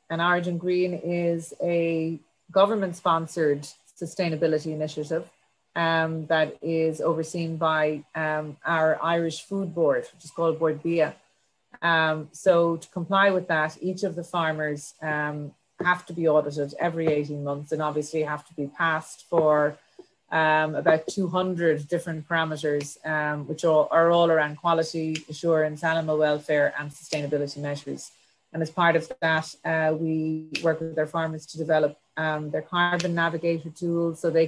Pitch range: 155-170 Hz